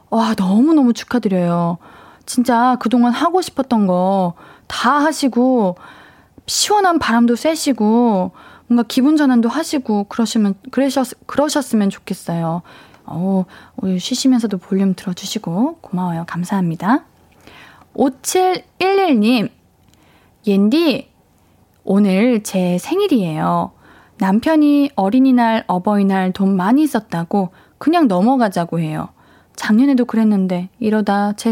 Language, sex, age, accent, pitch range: Korean, female, 20-39, native, 200-275 Hz